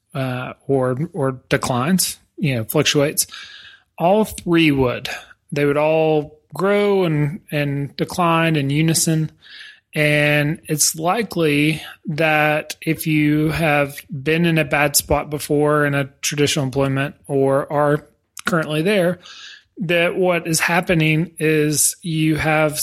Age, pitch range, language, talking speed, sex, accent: 30-49, 135-160 Hz, English, 125 wpm, male, American